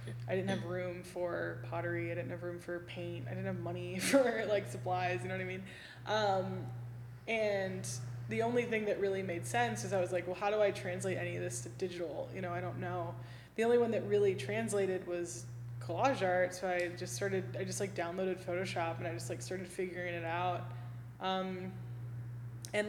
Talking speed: 210 wpm